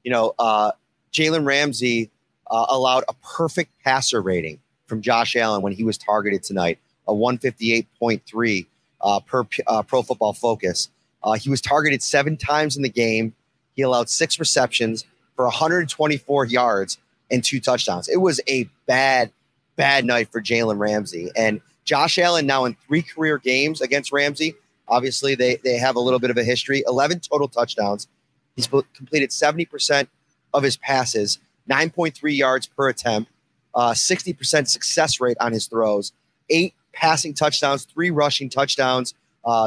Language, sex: English, male